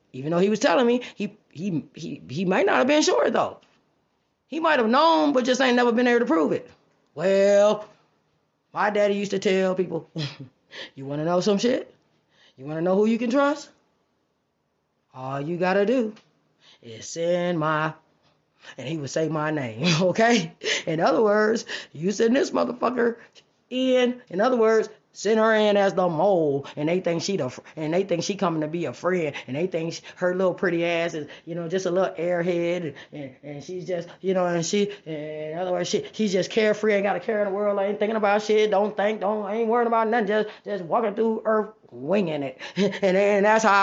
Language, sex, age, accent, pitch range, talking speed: English, female, 20-39, American, 165-215 Hz, 210 wpm